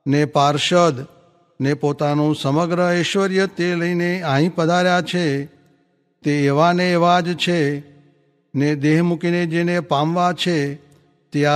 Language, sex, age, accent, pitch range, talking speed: English, male, 60-79, Indian, 145-175 Hz, 120 wpm